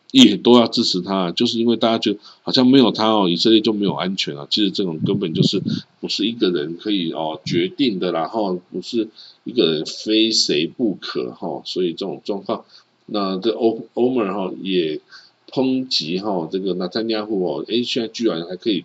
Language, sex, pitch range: Chinese, male, 90-120 Hz